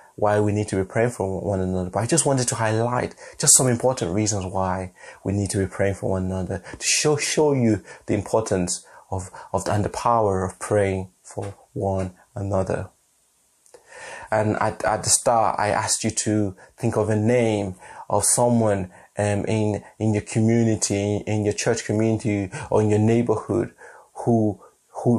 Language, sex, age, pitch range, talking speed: English, male, 30-49, 100-115 Hz, 175 wpm